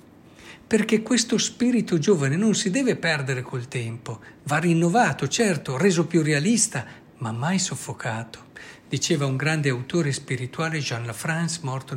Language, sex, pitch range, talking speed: Italian, male, 125-175 Hz, 135 wpm